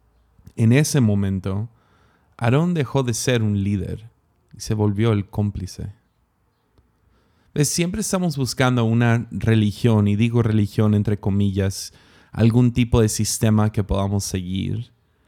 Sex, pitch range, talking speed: male, 100-120 Hz, 120 wpm